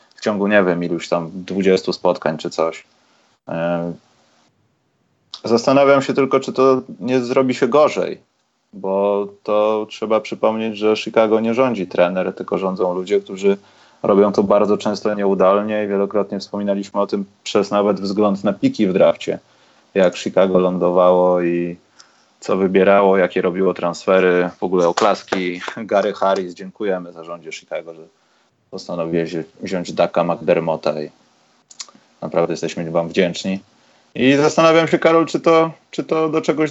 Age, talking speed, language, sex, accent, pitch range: 20-39, 140 wpm, Polish, male, native, 95-125 Hz